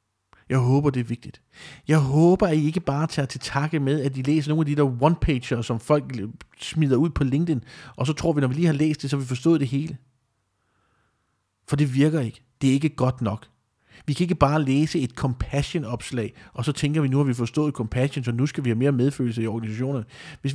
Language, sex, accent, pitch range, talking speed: Danish, male, native, 120-155 Hz, 235 wpm